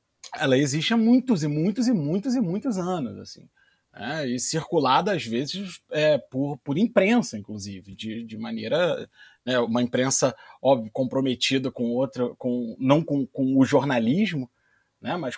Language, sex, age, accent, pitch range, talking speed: Portuguese, male, 30-49, Brazilian, 130-185 Hz, 145 wpm